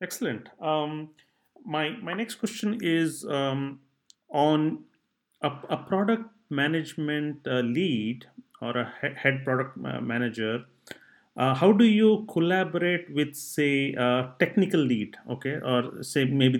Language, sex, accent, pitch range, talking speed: English, male, Indian, 125-160 Hz, 125 wpm